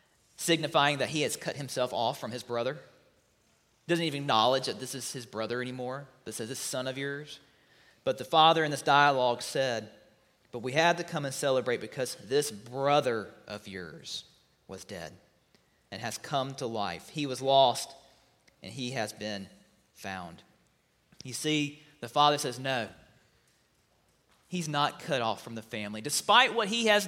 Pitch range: 115-150 Hz